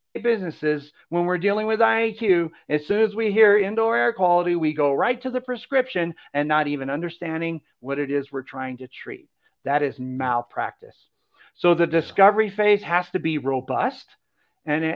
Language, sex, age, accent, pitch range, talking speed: English, male, 50-69, American, 150-200 Hz, 175 wpm